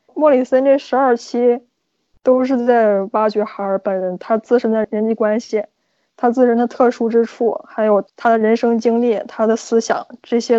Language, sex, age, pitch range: Chinese, female, 20-39, 210-240 Hz